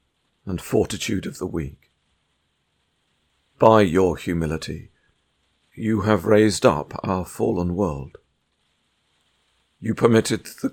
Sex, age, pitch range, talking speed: male, 50-69, 85-115 Hz, 100 wpm